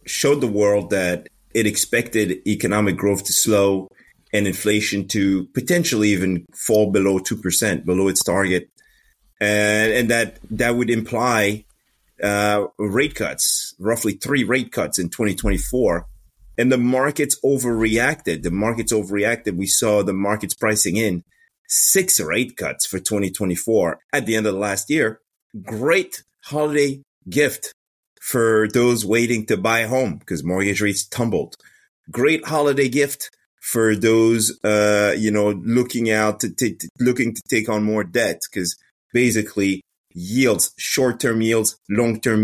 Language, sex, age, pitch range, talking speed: English, male, 30-49, 105-120 Hz, 140 wpm